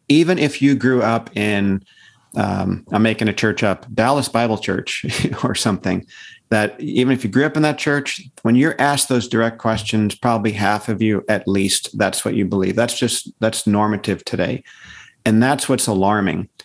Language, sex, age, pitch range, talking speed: English, male, 50-69, 105-130 Hz, 185 wpm